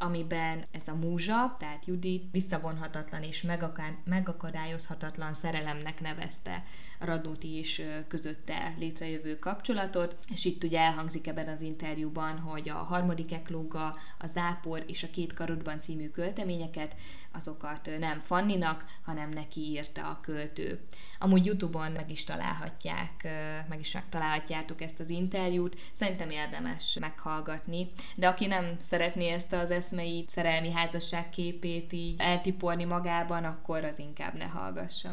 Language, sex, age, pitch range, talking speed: Hungarian, female, 20-39, 160-180 Hz, 130 wpm